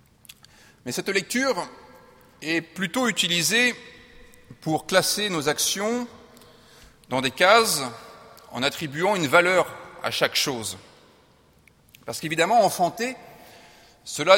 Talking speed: 100 wpm